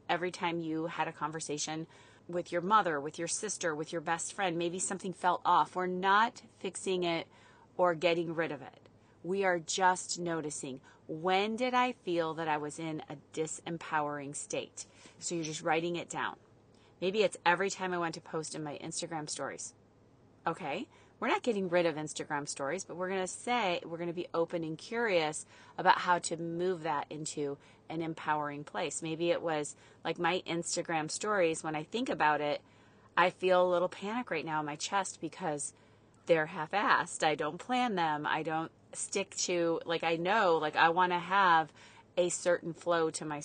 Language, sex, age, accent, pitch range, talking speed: English, female, 30-49, American, 150-180 Hz, 190 wpm